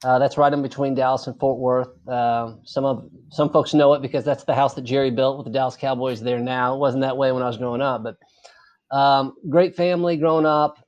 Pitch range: 130-155 Hz